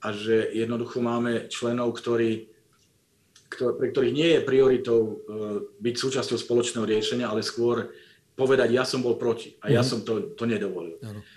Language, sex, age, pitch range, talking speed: Slovak, male, 40-59, 115-135 Hz, 155 wpm